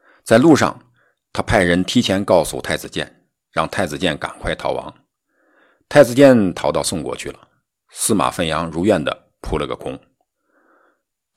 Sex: male